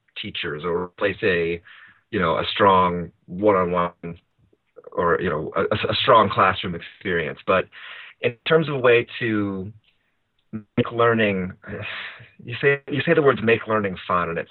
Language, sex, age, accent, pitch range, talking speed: English, male, 30-49, American, 85-110 Hz, 155 wpm